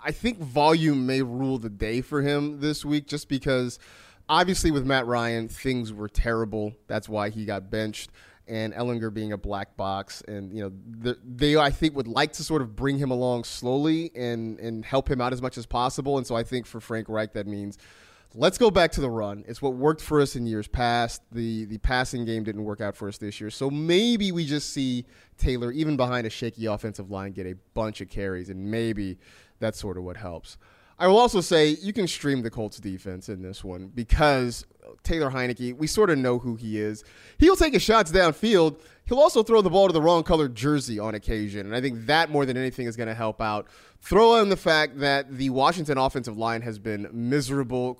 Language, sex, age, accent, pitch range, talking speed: English, male, 30-49, American, 110-145 Hz, 225 wpm